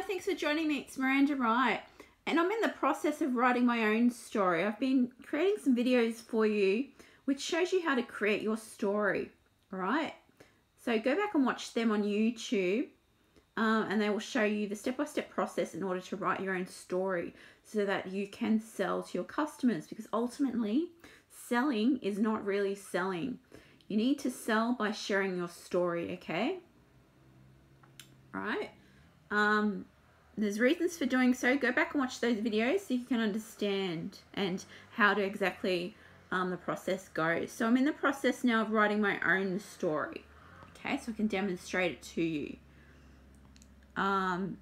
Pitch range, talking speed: 190-250 Hz, 170 wpm